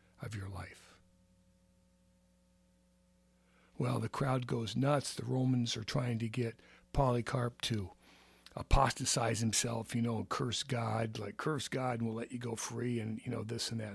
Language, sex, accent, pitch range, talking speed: English, male, American, 90-125 Hz, 165 wpm